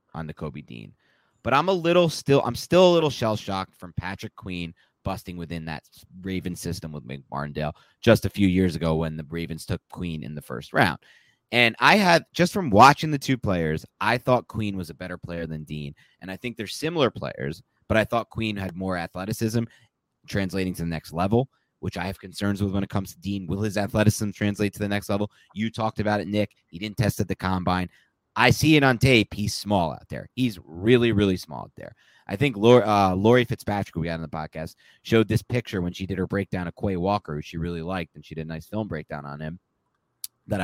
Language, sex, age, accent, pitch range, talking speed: English, male, 30-49, American, 85-120 Hz, 230 wpm